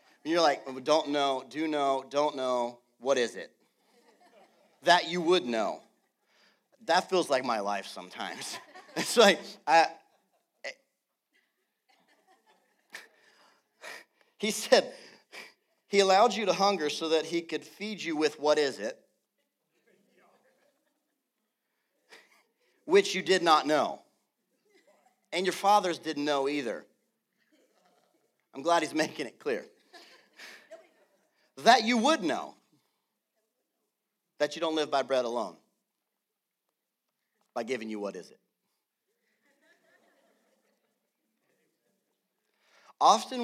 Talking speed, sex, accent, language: 105 wpm, male, American, English